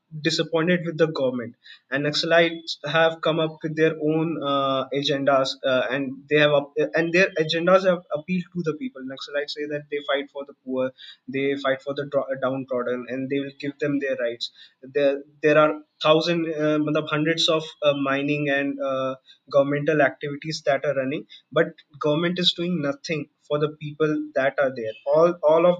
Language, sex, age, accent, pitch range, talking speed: English, male, 20-39, Indian, 140-170 Hz, 175 wpm